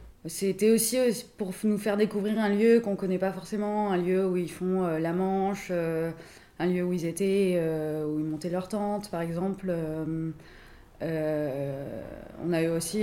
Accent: French